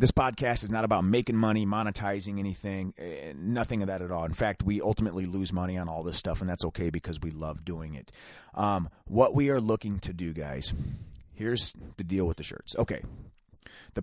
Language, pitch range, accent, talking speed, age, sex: English, 95-115 Hz, American, 205 wpm, 30-49, male